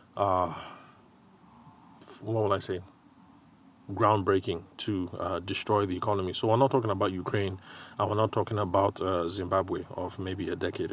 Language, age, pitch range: English, 30-49, 90-105 Hz